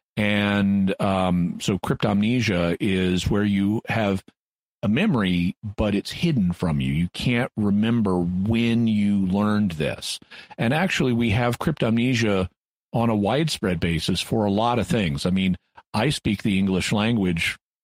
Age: 40-59